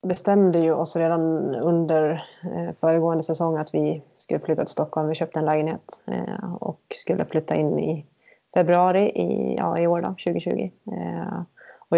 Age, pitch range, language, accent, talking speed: 20-39, 160-185 Hz, Swedish, native, 135 wpm